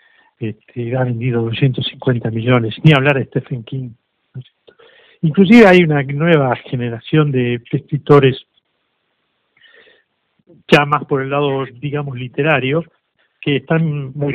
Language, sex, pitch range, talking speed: Spanish, male, 125-160 Hz, 115 wpm